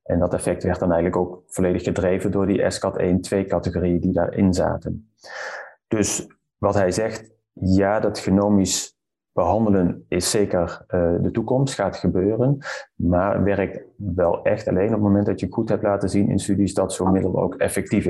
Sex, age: male, 30-49